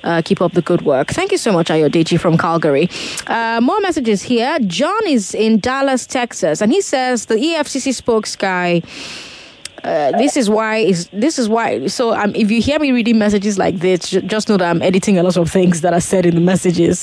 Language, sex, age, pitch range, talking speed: English, female, 20-39, 185-240 Hz, 225 wpm